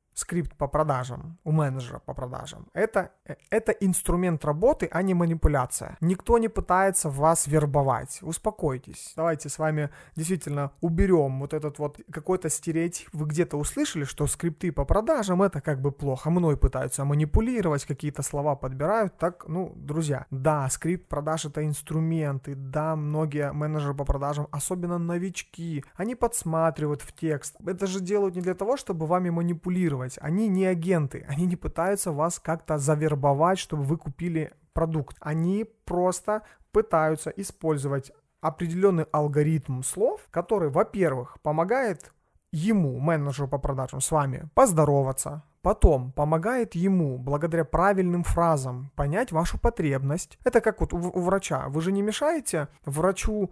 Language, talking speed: Russian, 140 wpm